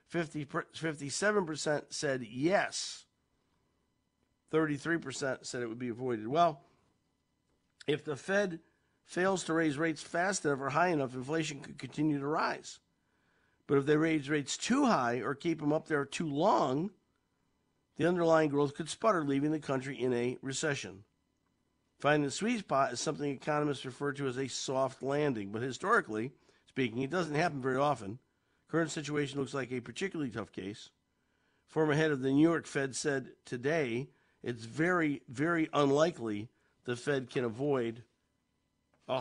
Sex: male